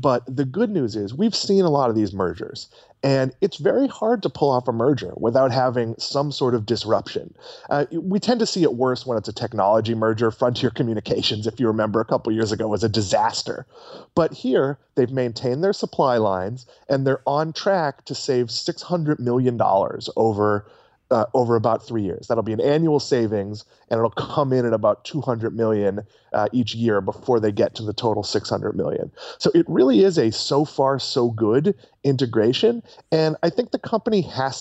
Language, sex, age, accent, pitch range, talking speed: English, male, 20-39, American, 115-170 Hz, 195 wpm